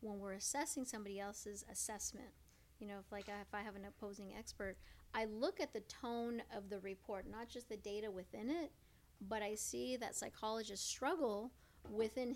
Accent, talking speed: American, 185 wpm